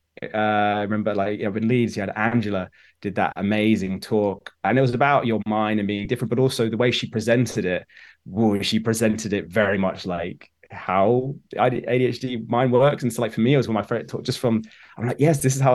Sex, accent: male, British